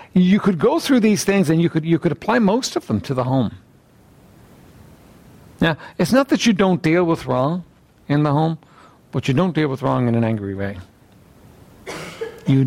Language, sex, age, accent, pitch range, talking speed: English, male, 60-79, American, 125-170 Hz, 195 wpm